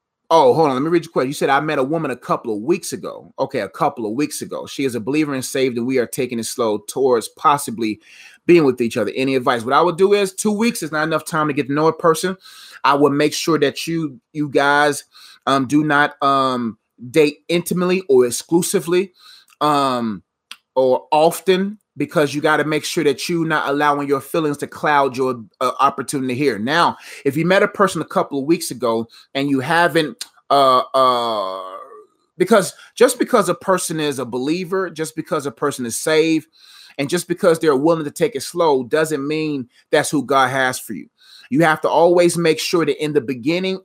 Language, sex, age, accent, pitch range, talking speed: English, male, 30-49, American, 140-180 Hz, 215 wpm